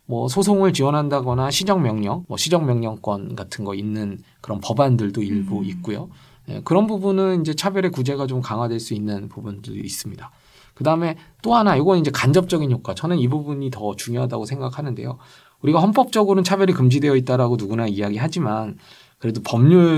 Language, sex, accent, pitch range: Korean, male, native, 120-175 Hz